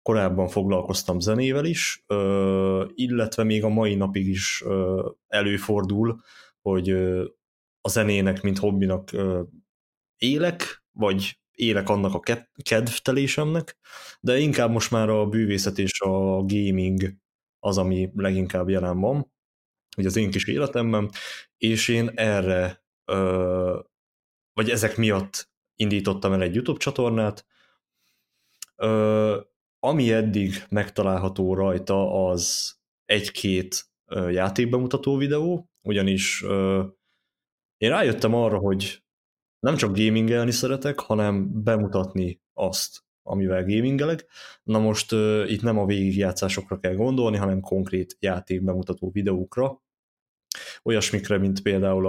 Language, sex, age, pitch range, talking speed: Hungarian, male, 20-39, 95-115 Hz, 110 wpm